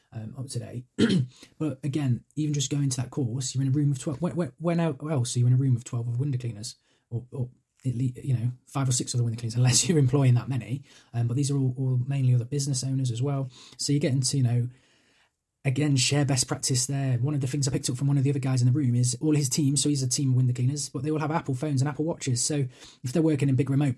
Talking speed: 280 wpm